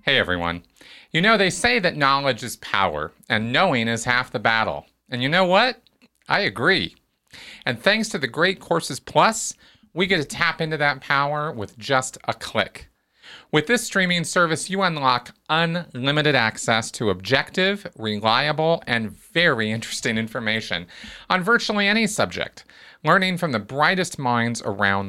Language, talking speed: English, 155 wpm